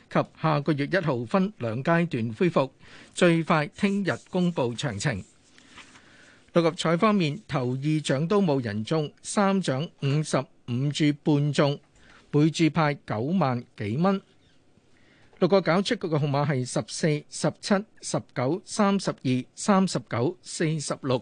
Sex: male